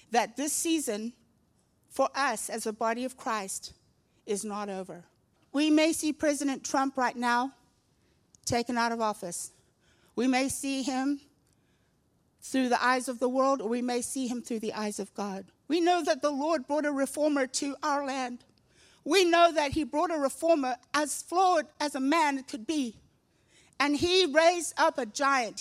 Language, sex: English, female